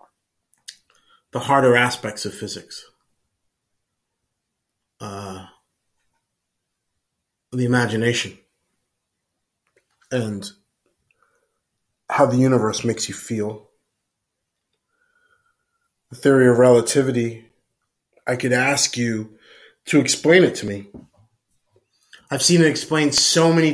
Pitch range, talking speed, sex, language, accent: 110-140 Hz, 85 wpm, male, English, American